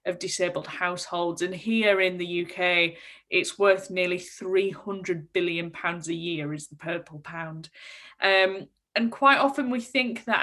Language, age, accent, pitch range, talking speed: English, 10-29, British, 185-235 Hz, 155 wpm